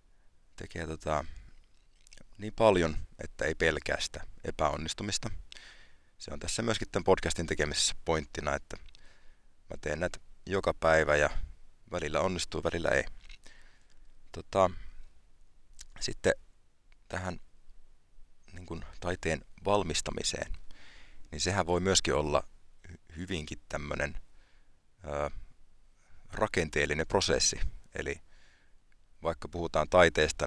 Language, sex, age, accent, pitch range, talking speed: Finnish, male, 30-49, native, 75-90 Hz, 85 wpm